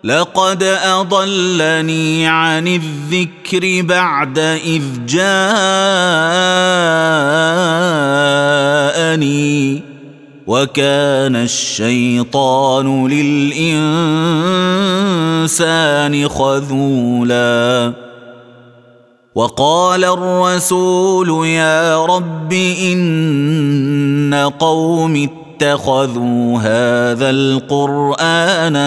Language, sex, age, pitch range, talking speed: Arabic, male, 30-49, 125-165 Hz, 40 wpm